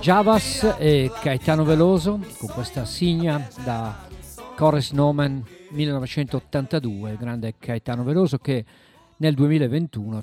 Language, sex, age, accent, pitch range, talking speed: Italian, male, 50-69, native, 115-150 Hz, 105 wpm